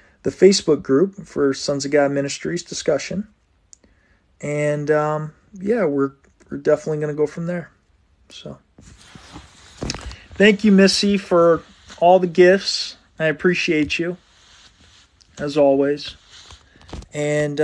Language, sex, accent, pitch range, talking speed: English, male, American, 95-150 Hz, 110 wpm